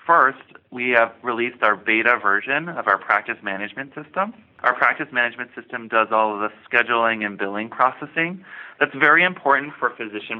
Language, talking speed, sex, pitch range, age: English, 165 wpm, male, 105-135 Hz, 20-39